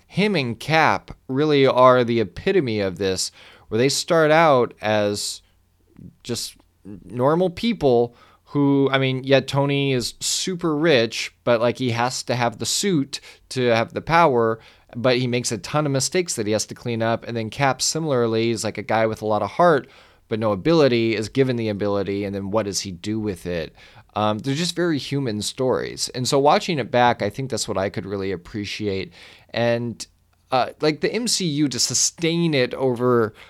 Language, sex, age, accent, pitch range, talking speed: English, male, 20-39, American, 105-135 Hz, 190 wpm